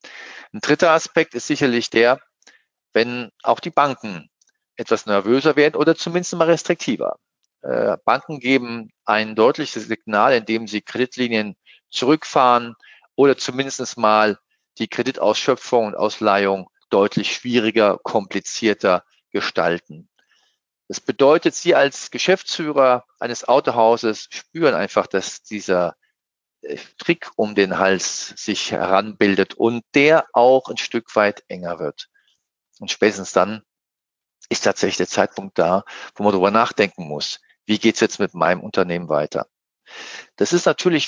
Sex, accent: male, German